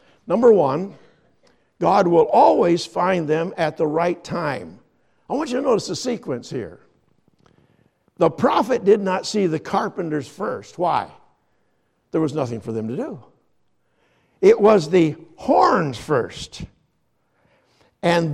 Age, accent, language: 60-79, American, English